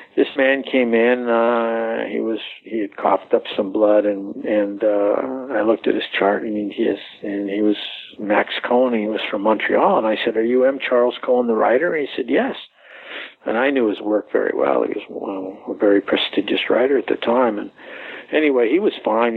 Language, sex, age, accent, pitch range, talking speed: English, male, 60-79, American, 105-130 Hz, 210 wpm